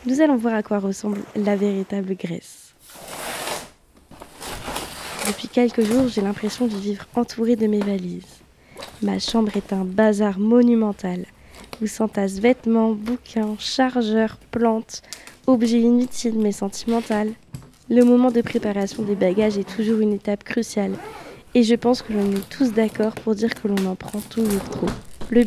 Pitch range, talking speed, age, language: 195-230 Hz, 150 wpm, 20-39, French